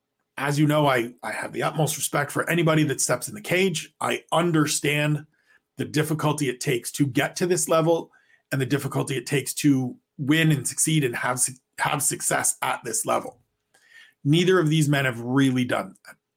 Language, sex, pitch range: English, male, 135-165 Hz